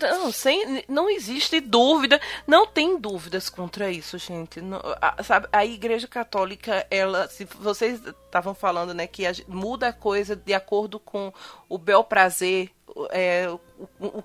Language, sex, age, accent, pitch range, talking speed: Portuguese, female, 20-39, Brazilian, 195-275 Hz, 120 wpm